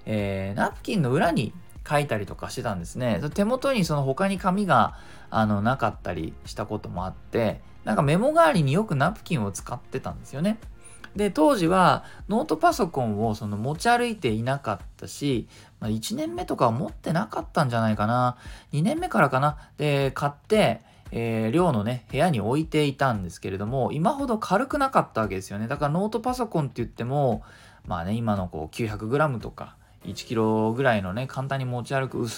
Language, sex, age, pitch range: Japanese, male, 20-39, 105-160 Hz